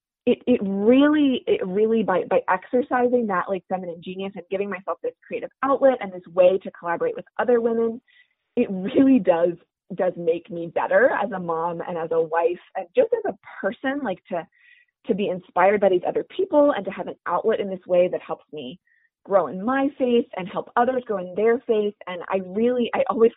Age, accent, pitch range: 20-39, American, 180-265 Hz